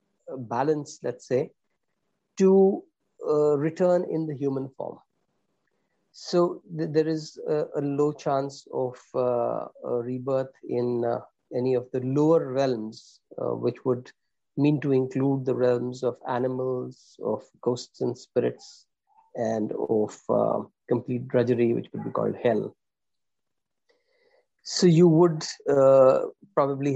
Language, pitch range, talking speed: English, 130-180 Hz, 130 wpm